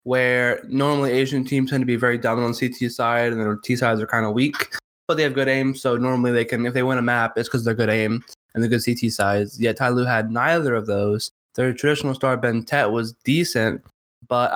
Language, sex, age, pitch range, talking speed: English, male, 20-39, 120-135 Hz, 235 wpm